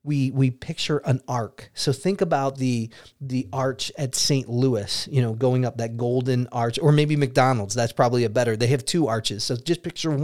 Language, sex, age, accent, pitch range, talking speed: English, male, 30-49, American, 125-160 Hz, 205 wpm